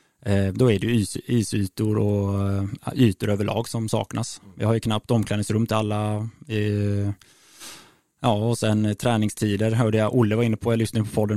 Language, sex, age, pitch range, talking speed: Swedish, male, 20-39, 105-115 Hz, 155 wpm